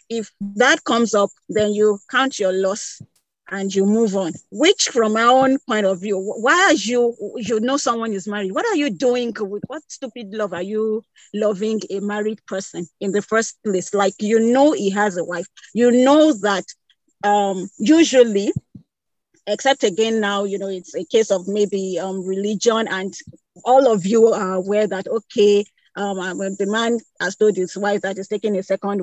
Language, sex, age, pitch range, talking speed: English, female, 40-59, 200-245 Hz, 185 wpm